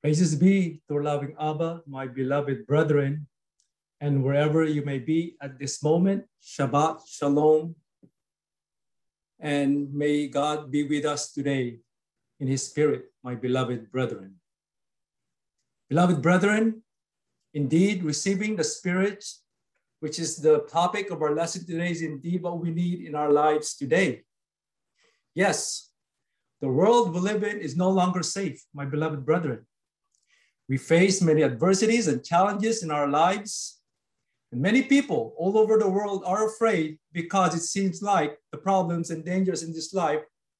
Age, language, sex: 50-69, English, male